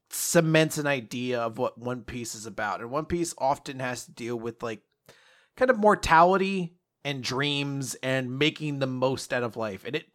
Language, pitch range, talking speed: English, 135-185 Hz, 190 wpm